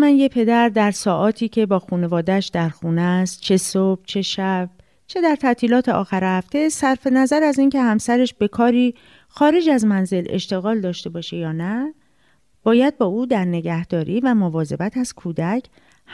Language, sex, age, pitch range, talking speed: Persian, female, 40-59, 185-250 Hz, 165 wpm